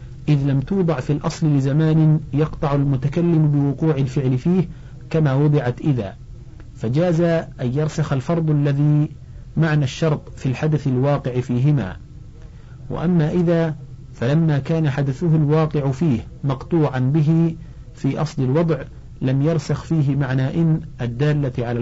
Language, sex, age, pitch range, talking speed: Arabic, male, 40-59, 130-155 Hz, 120 wpm